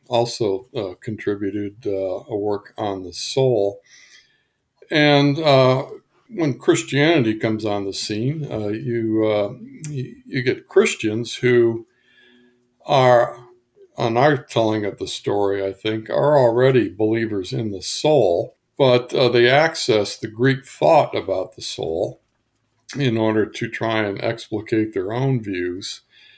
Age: 60-79